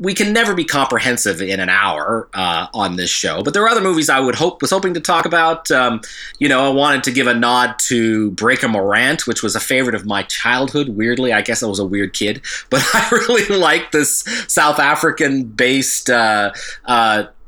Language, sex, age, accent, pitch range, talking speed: English, male, 30-49, American, 115-155 Hz, 210 wpm